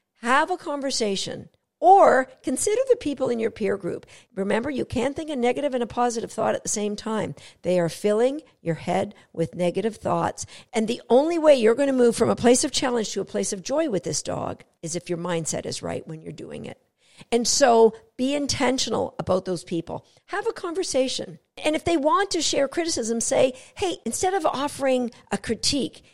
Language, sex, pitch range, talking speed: English, female, 200-290 Hz, 200 wpm